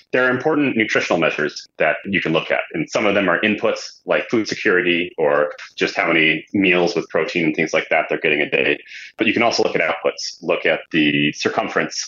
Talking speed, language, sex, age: 225 wpm, English, male, 30-49